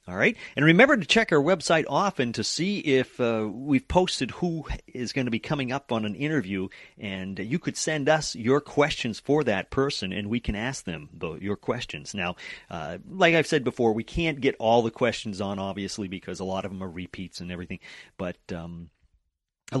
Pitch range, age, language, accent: 105-145 Hz, 40-59, English, American